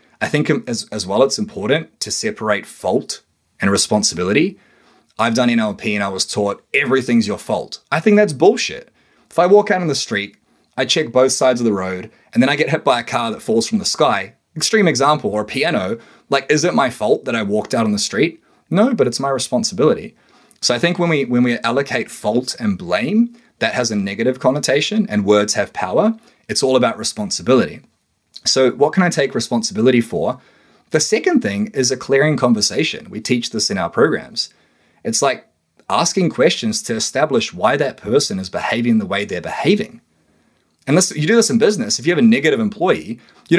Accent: Australian